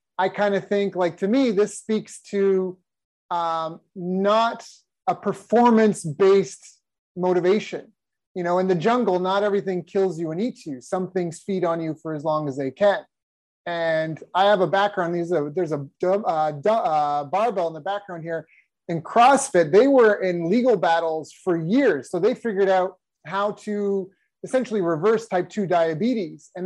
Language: English